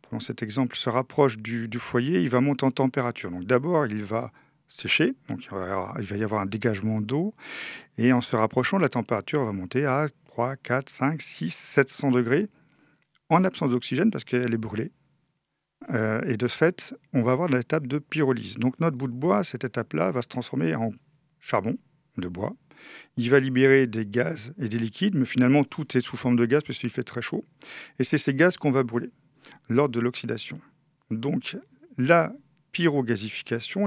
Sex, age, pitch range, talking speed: male, 40-59, 115-150 Hz, 185 wpm